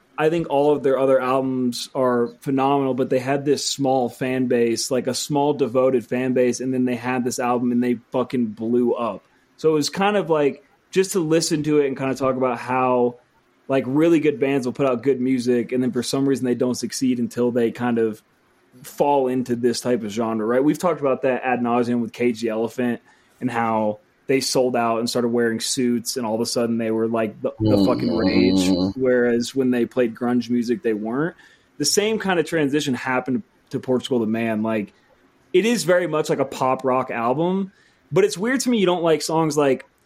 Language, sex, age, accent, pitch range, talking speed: English, male, 20-39, American, 120-140 Hz, 220 wpm